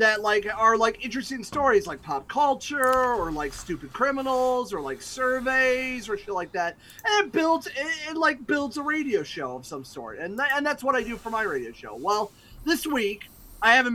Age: 30-49